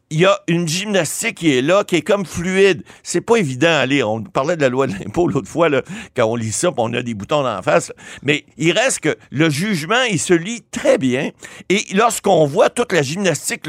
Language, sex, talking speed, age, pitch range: French, male, 250 wpm, 60-79, 145-205 Hz